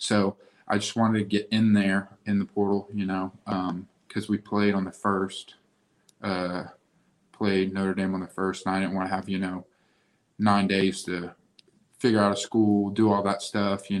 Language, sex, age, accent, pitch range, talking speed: English, male, 20-39, American, 95-105 Hz, 200 wpm